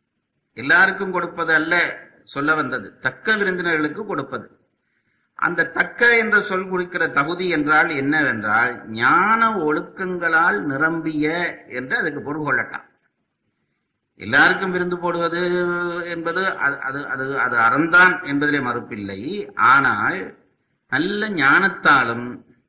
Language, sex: English, male